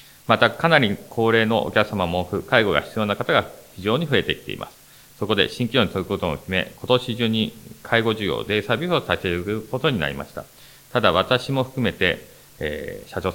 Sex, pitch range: male, 90-110 Hz